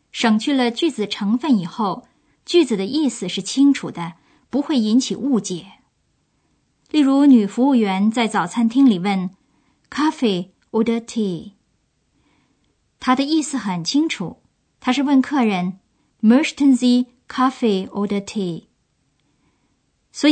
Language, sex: Chinese, male